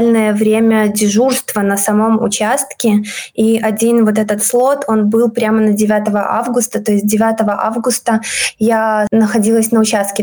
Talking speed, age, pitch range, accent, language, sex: 140 wpm, 20-39, 215-235 Hz, native, Russian, female